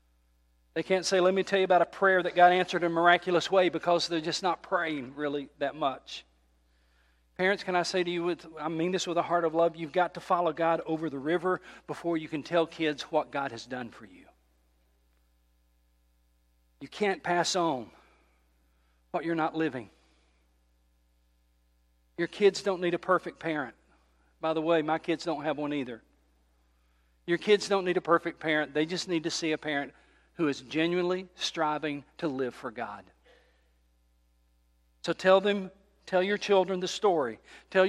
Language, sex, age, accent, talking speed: English, male, 50-69, American, 180 wpm